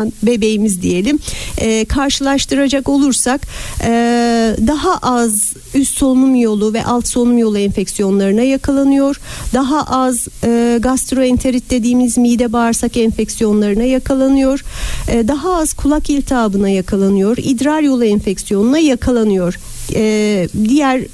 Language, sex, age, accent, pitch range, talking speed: Turkish, female, 50-69, native, 225-275 Hz, 105 wpm